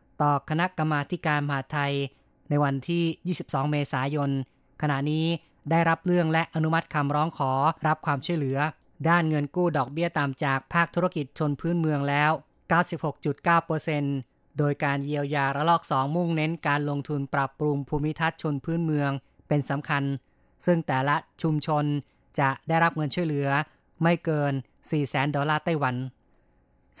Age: 20-39